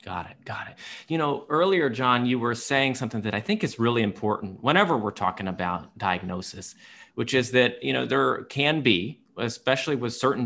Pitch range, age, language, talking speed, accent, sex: 95-125 Hz, 30-49, English, 195 wpm, American, male